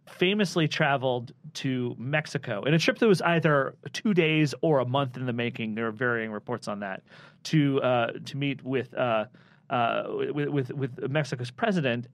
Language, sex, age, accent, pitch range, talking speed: English, male, 30-49, American, 125-160 Hz, 180 wpm